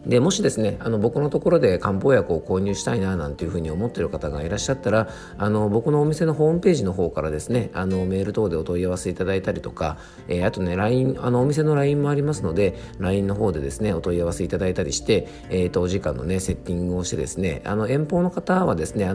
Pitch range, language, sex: 85-105 Hz, Japanese, male